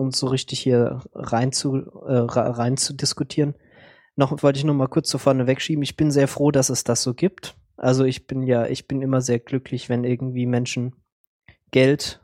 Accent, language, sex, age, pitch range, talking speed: German, German, male, 20-39, 120-140 Hz, 200 wpm